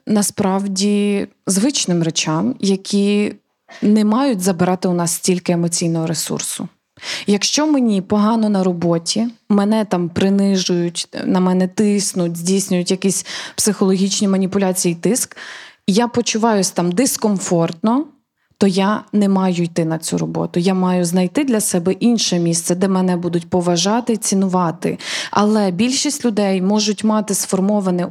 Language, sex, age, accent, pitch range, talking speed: Ukrainian, female, 20-39, native, 180-225 Hz, 125 wpm